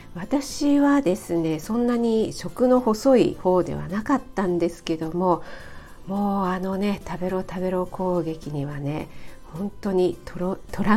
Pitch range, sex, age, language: 175-235 Hz, female, 50-69, Japanese